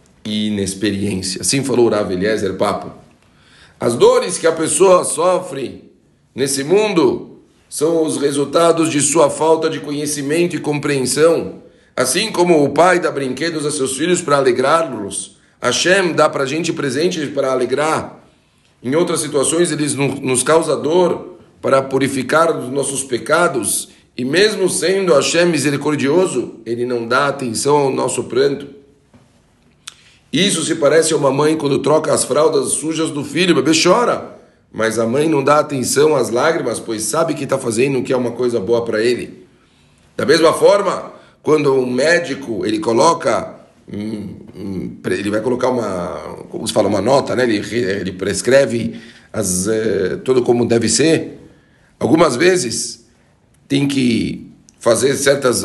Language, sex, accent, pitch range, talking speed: Portuguese, male, Brazilian, 120-160 Hz, 150 wpm